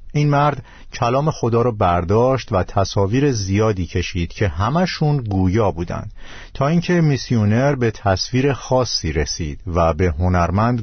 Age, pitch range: 50-69, 95-125 Hz